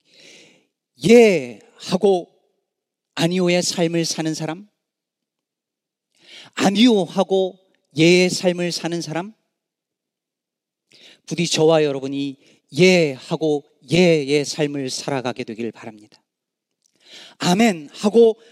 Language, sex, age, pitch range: Korean, male, 40-59, 145-215 Hz